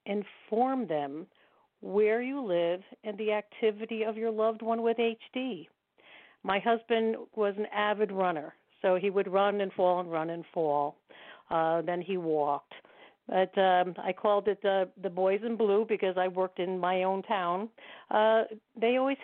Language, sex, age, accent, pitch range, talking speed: English, female, 50-69, American, 170-215 Hz, 170 wpm